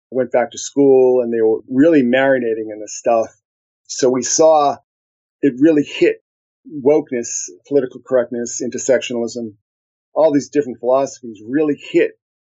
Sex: male